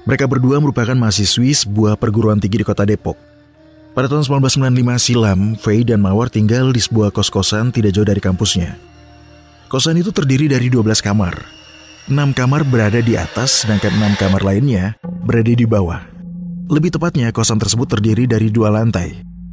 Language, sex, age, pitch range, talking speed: Indonesian, male, 30-49, 100-135 Hz, 155 wpm